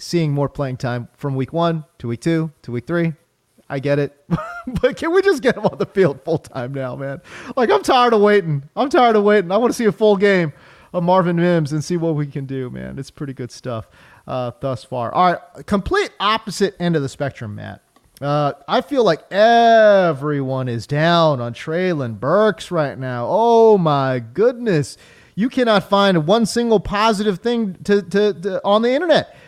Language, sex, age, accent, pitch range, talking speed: English, male, 30-49, American, 135-195 Hz, 200 wpm